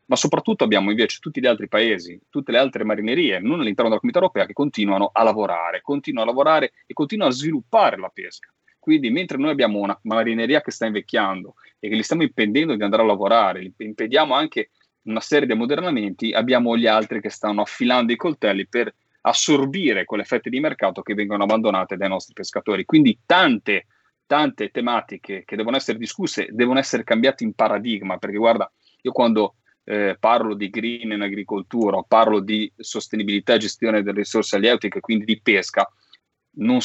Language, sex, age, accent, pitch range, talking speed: Italian, male, 30-49, native, 100-130 Hz, 180 wpm